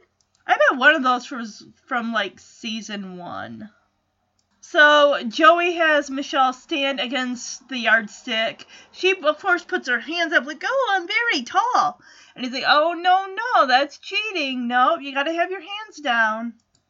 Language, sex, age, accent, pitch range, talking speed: English, female, 30-49, American, 230-335 Hz, 160 wpm